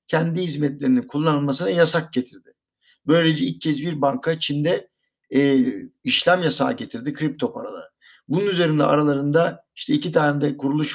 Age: 50-69